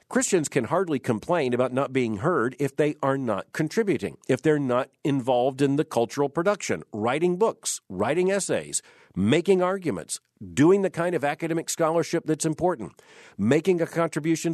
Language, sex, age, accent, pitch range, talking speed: English, male, 50-69, American, 130-165 Hz, 155 wpm